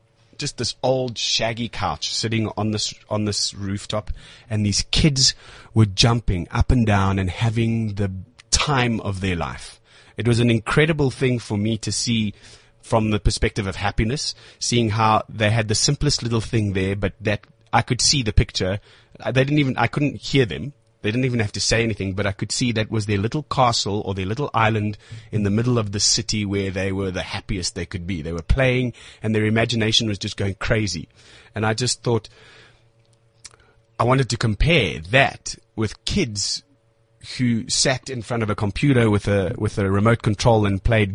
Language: English